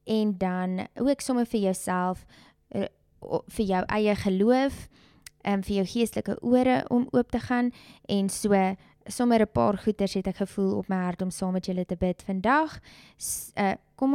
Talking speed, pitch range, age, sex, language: 170 wpm, 185-220 Hz, 20-39, female, English